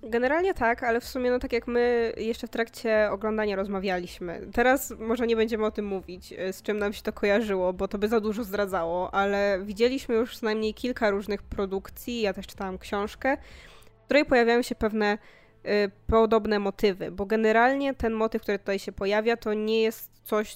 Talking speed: 185 wpm